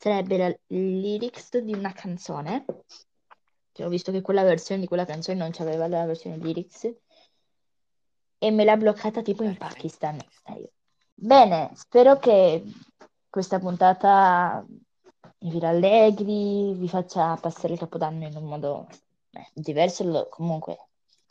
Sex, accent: female, native